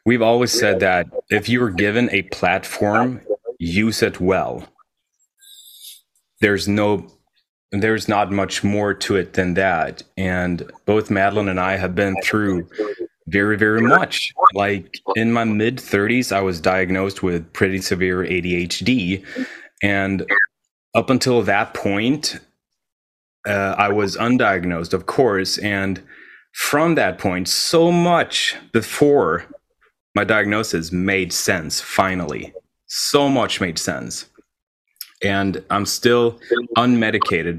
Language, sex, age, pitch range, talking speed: English, male, 30-49, 95-110 Hz, 125 wpm